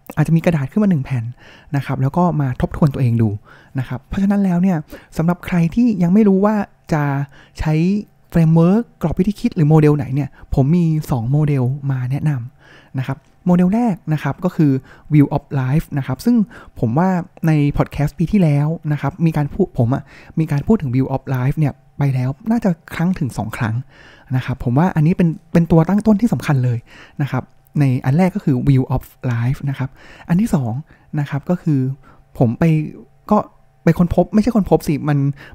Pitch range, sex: 130-175 Hz, male